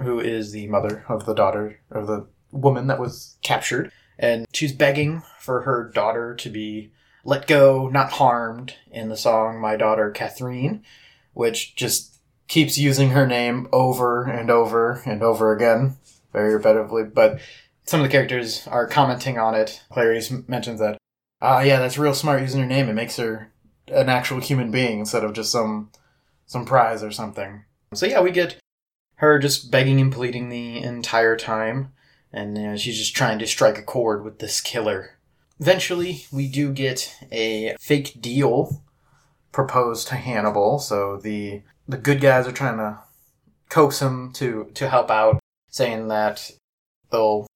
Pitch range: 110-135 Hz